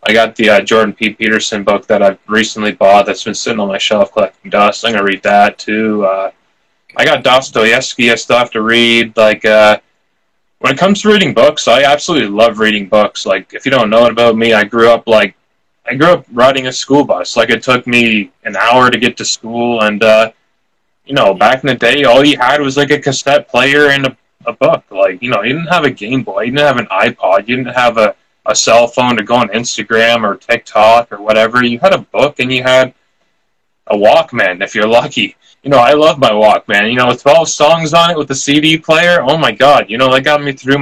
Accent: American